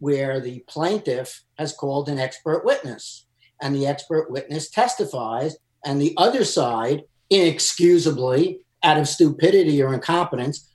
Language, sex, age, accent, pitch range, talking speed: English, male, 50-69, American, 135-180 Hz, 130 wpm